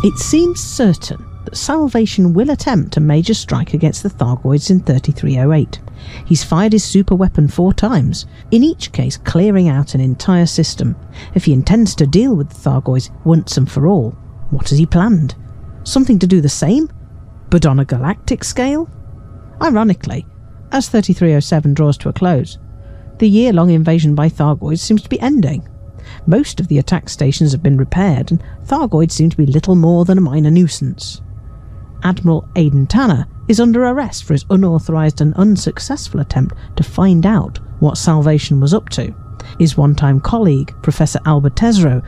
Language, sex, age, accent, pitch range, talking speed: English, female, 50-69, British, 140-195 Hz, 165 wpm